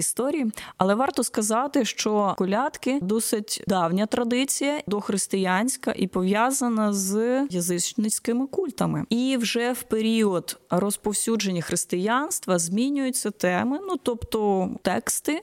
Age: 20-39